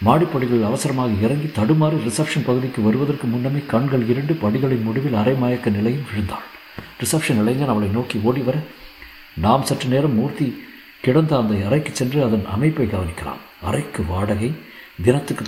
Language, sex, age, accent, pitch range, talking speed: Tamil, male, 50-69, native, 110-140 Hz, 130 wpm